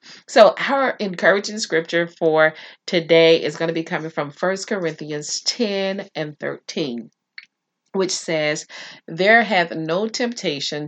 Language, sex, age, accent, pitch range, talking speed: English, female, 40-59, American, 160-220 Hz, 125 wpm